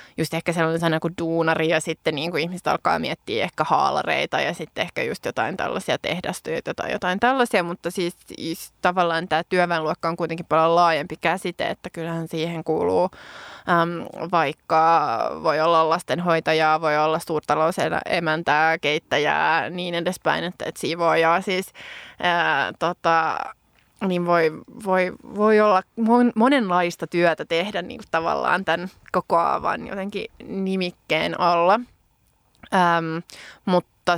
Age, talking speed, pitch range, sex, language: 20-39, 130 wpm, 165-190 Hz, female, Finnish